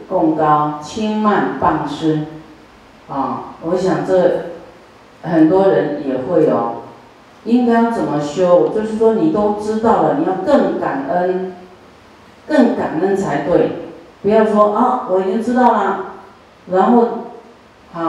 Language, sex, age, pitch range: Chinese, female, 40-59, 145-215 Hz